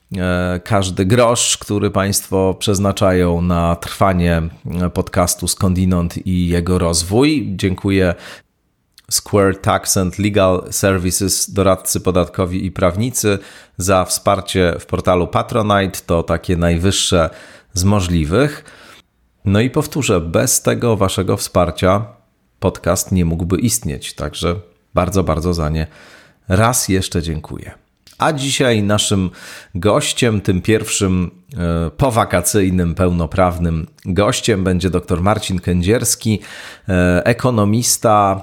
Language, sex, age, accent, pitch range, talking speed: Polish, male, 40-59, native, 90-105 Hz, 100 wpm